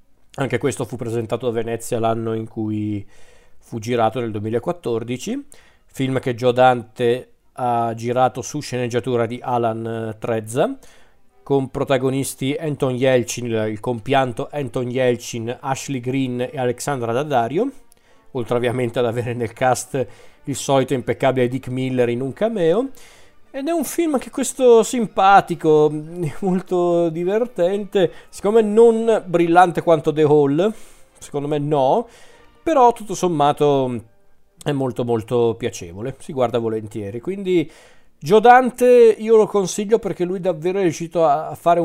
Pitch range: 120-170 Hz